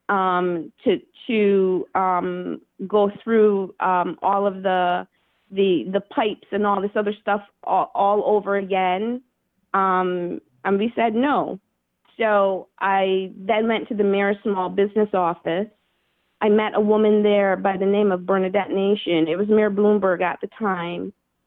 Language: English